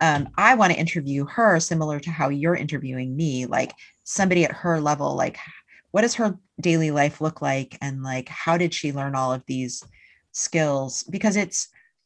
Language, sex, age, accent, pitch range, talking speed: English, female, 30-49, American, 130-160 Hz, 185 wpm